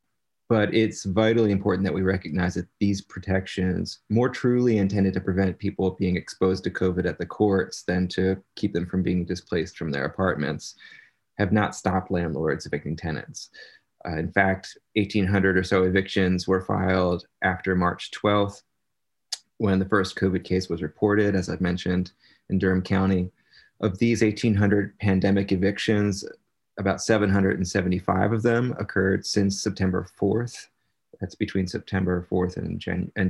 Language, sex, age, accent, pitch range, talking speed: English, male, 30-49, American, 90-105 Hz, 150 wpm